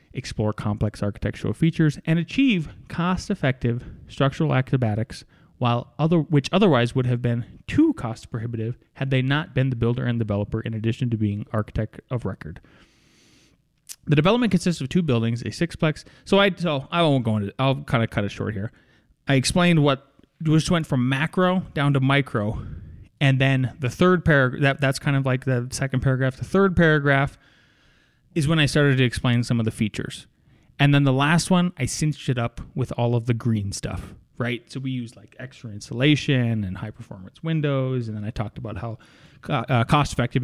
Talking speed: 185 wpm